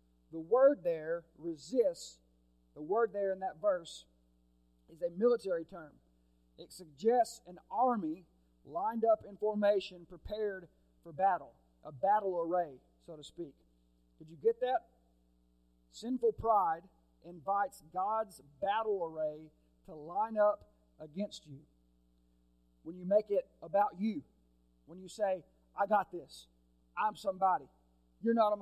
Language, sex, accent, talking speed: English, male, American, 130 wpm